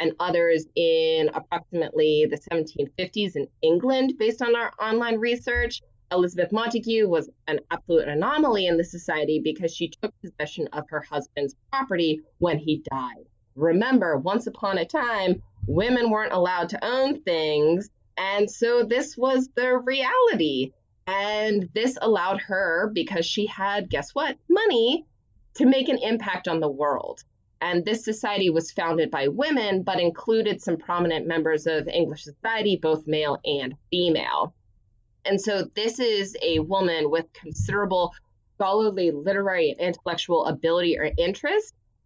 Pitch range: 160-225 Hz